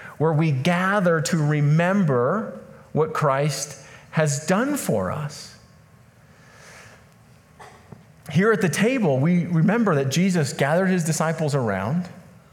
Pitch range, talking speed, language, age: 135-175 Hz, 110 wpm, English, 40-59